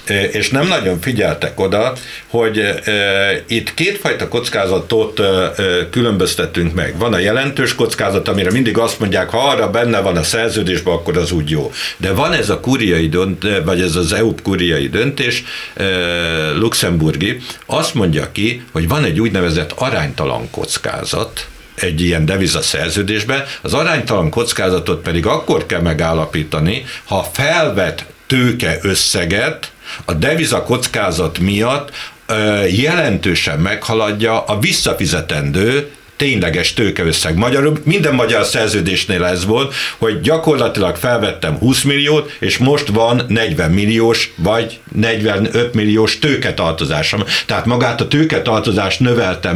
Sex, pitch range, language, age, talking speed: male, 90-120 Hz, Hungarian, 60-79, 120 wpm